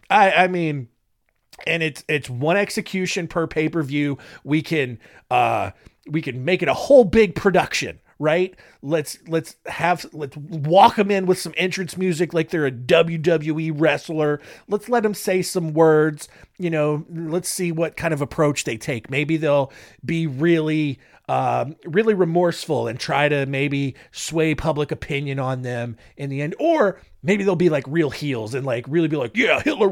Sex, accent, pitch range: male, American, 145-185 Hz